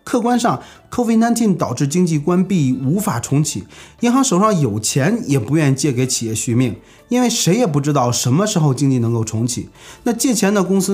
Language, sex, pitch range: Chinese, male, 125-175 Hz